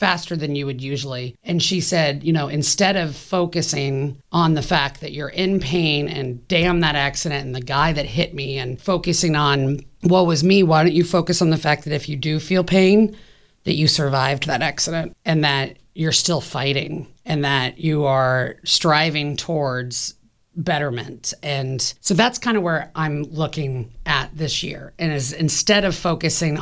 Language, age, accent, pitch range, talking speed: English, 40-59, American, 145-185 Hz, 185 wpm